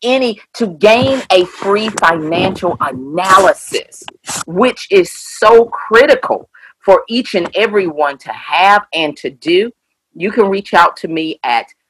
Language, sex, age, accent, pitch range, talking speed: English, female, 40-59, American, 165-240 Hz, 140 wpm